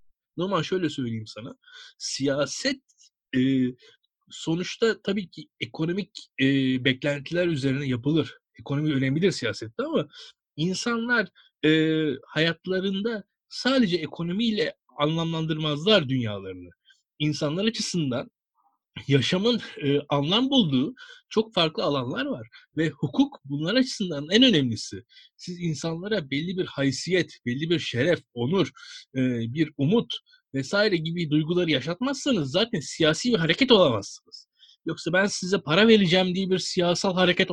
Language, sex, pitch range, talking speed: Turkish, male, 145-205 Hz, 115 wpm